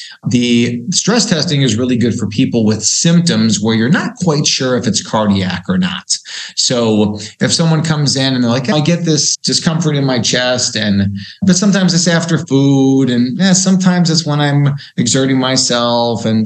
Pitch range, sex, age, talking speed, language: 110-155 Hz, male, 30-49, 180 wpm, English